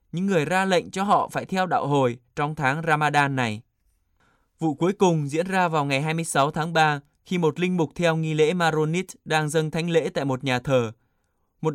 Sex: male